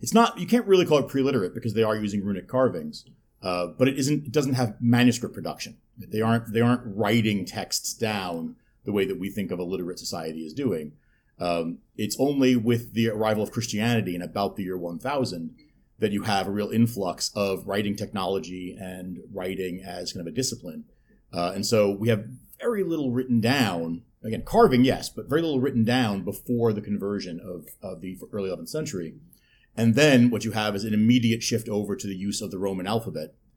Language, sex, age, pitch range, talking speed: English, male, 40-59, 100-120 Hz, 200 wpm